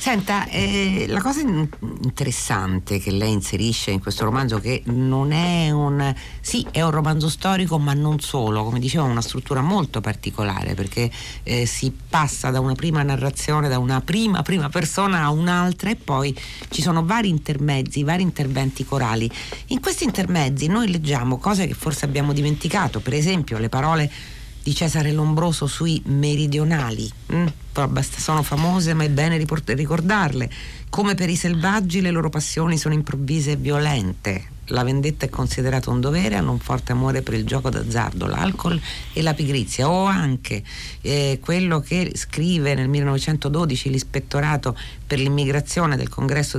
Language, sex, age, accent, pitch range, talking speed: Italian, female, 50-69, native, 130-160 Hz, 155 wpm